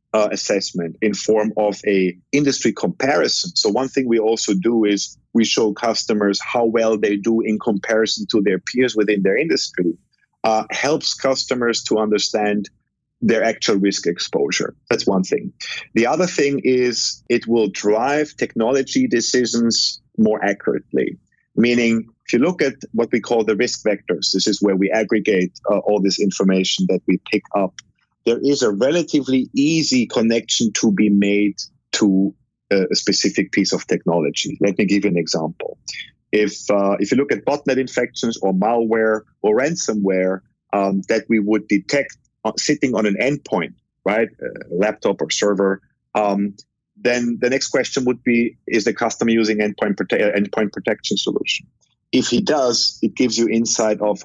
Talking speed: 165 wpm